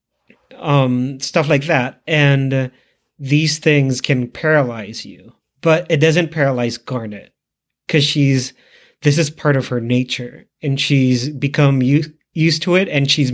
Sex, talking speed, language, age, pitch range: male, 140 wpm, English, 30-49, 125-150 Hz